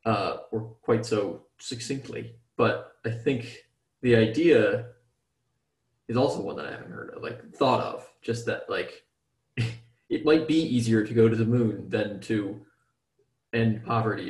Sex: male